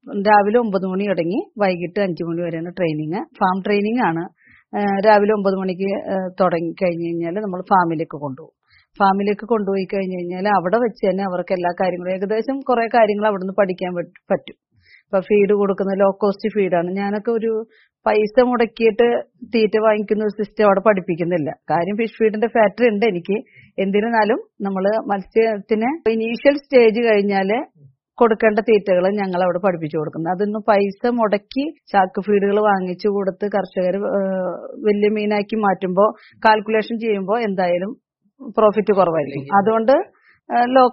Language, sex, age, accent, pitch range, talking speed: Malayalam, female, 30-49, native, 185-220 Hz, 125 wpm